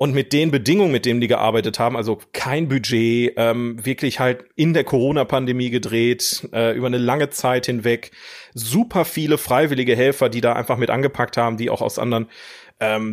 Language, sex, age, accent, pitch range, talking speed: German, male, 30-49, German, 115-135 Hz, 185 wpm